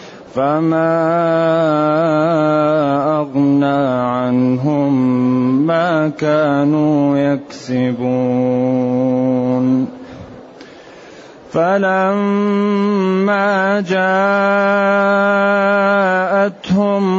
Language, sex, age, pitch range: Arabic, male, 30-49, 150-195 Hz